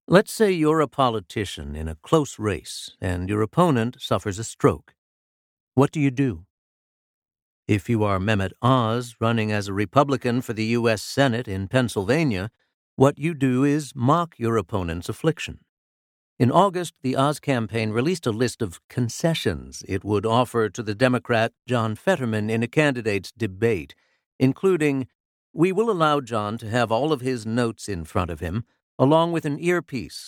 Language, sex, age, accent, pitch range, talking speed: English, male, 60-79, American, 105-135 Hz, 165 wpm